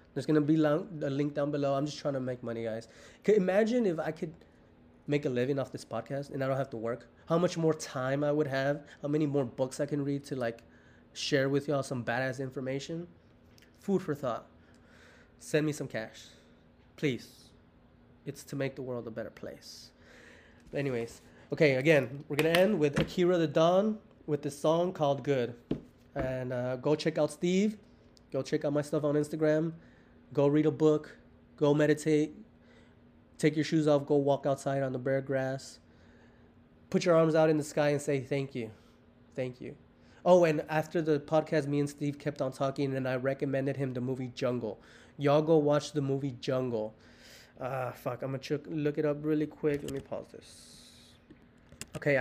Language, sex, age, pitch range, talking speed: English, male, 20-39, 130-155 Hz, 190 wpm